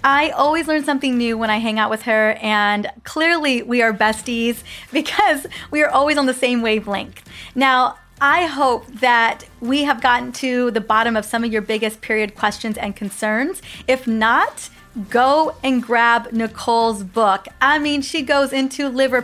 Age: 30-49